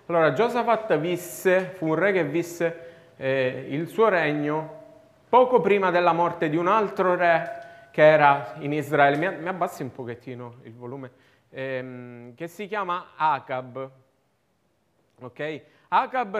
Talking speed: 135 wpm